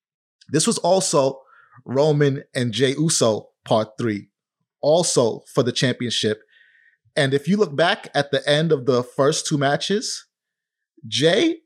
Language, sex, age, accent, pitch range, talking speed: English, male, 30-49, American, 140-175 Hz, 140 wpm